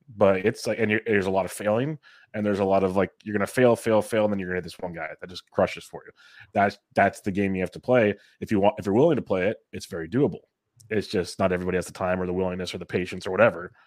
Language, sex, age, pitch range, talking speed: English, male, 20-39, 95-105 Hz, 305 wpm